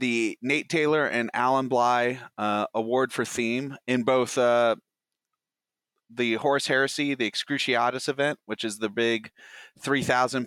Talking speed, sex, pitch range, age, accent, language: 140 wpm, male, 105-125 Hz, 30-49, American, English